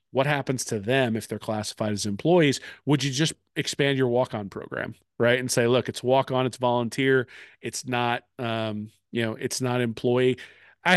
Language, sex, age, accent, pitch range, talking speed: English, male, 40-59, American, 110-135 Hz, 180 wpm